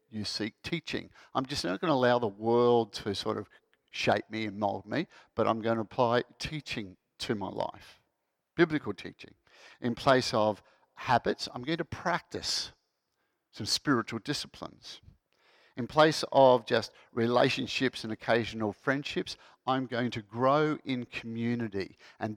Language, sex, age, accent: English, male, 50-69, Australian